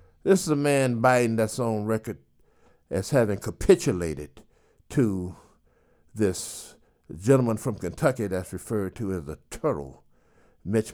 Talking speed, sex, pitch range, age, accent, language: 125 wpm, male, 80-125 Hz, 60-79, American, English